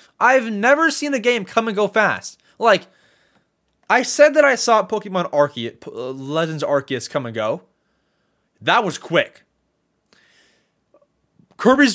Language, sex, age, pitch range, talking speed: English, male, 20-39, 140-225 Hz, 130 wpm